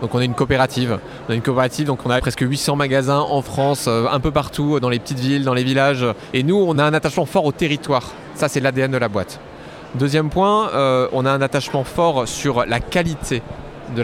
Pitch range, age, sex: 125-155 Hz, 20-39, male